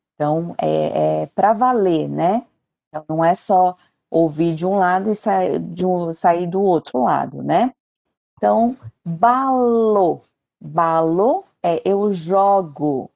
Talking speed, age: 130 wpm, 40-59